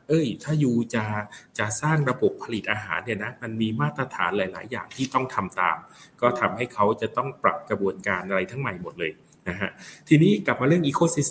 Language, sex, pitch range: Thai, male, 105-145 Hz